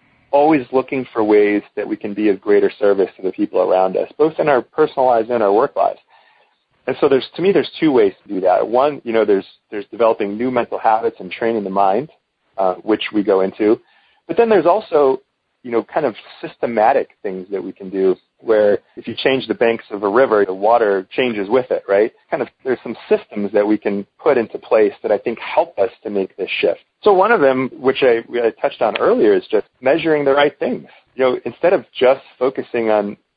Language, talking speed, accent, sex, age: English, 225 wpm, American, male, 30-49